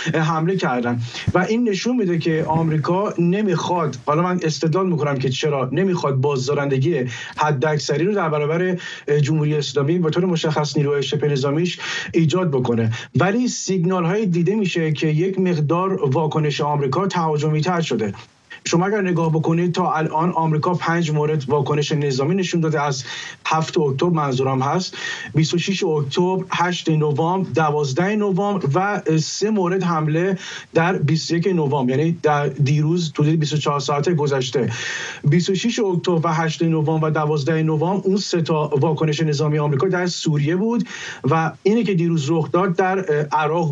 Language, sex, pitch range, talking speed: English, male, 150-180 Hz, 150 wpm